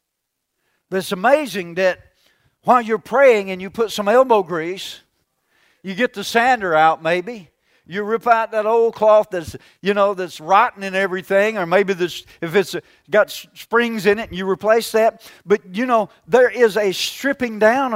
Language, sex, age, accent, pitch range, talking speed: English, male, 50-69, American, 190-235 Hz, 175 wpm